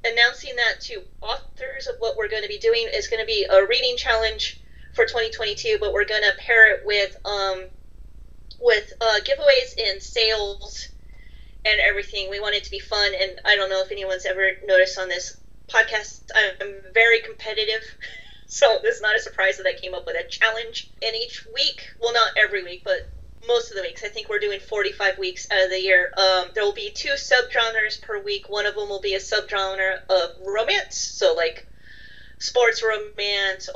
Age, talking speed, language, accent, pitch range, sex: 30-49, 195 wpm, English, American, 190-260 Hz, female